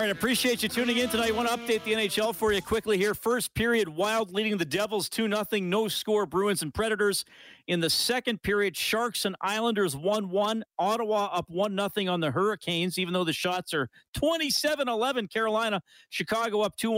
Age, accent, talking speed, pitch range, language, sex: 40-59, American, 200 wpm, 145-210 Hz, English, male